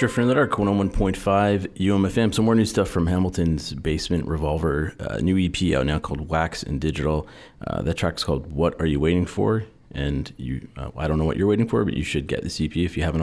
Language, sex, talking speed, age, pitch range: English, male, 240 wpm, 40-59, 75-90 Hz